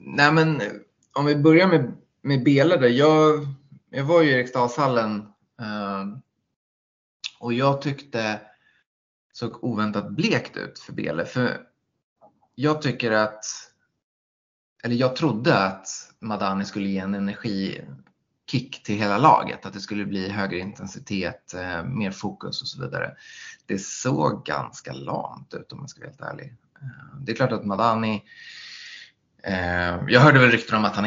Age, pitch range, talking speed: 20-39, 100-140 Hz, 140 wpm